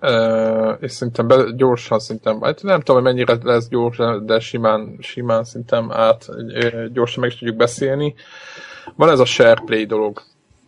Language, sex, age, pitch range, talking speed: Hungarian, male, 20-39, 110-125 Hz, 145 wpm